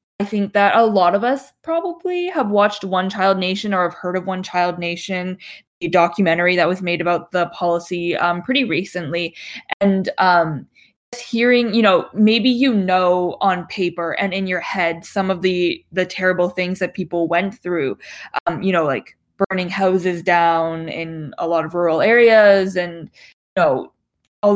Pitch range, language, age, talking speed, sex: 175-200 Hz, English, 20-39, 180 wpm, female